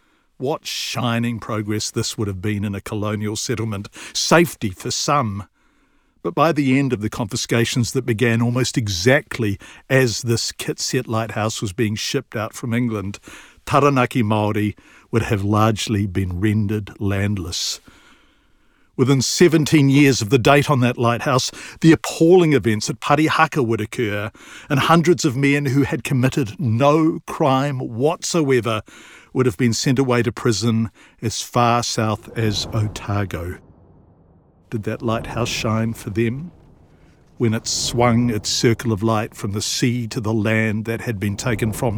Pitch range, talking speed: 105-130 Hz, 150 wpm